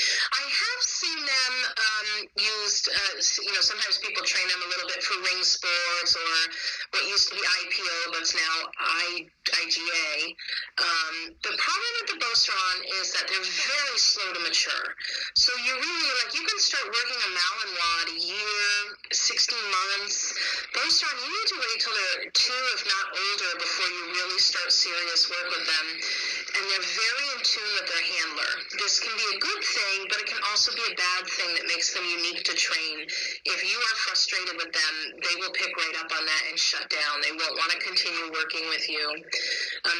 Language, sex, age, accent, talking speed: English, female, 30-49, American, 195 wpm